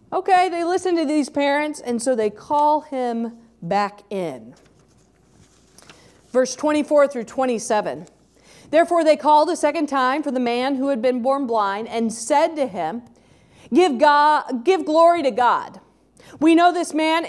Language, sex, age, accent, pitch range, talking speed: English, female, 40-59, American, 235-330 Hz, 155 wpm